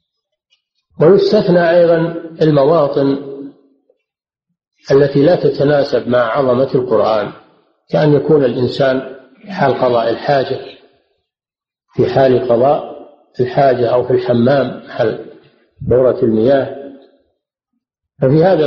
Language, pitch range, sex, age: Arabic, 125-170 Hz, male, 50-69